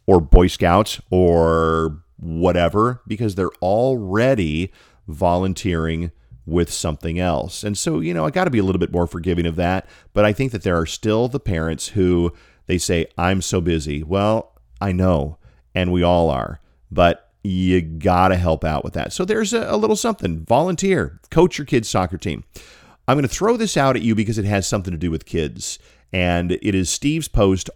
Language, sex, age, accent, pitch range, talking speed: English, male, 40-59, American, 85-110 Hz, 195 wpm